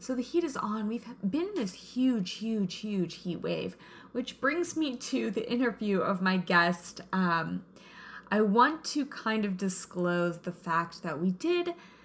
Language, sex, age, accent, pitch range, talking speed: English, female, 20-39, American, 185-245 Hz, 175 wpm